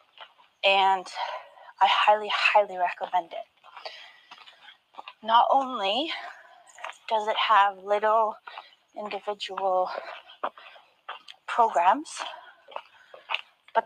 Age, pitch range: 20-39, 195-225 Hz